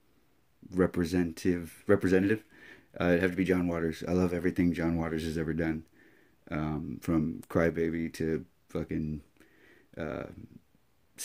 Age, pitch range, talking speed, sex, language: 30-49, 80-95 Hz, 125 wpm, male, English